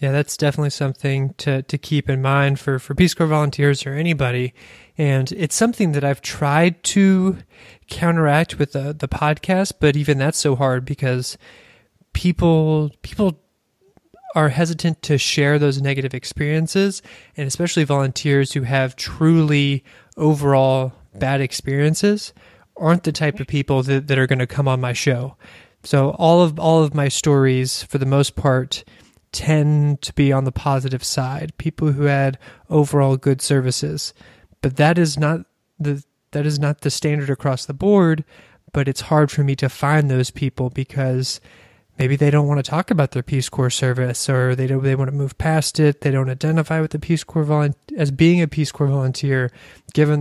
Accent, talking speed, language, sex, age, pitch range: American, 175 wpm, English, male, 20-39, 135-155 Hz